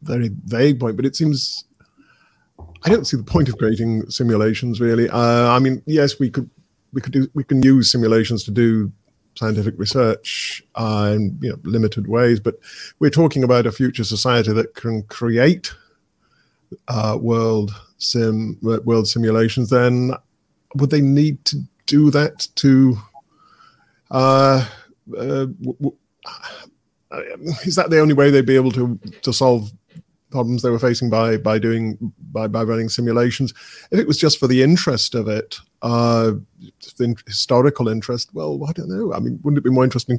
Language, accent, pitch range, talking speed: English, British, 115-135 Hz, 165 wpm